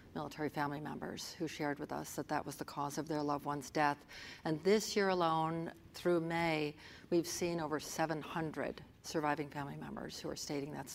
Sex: female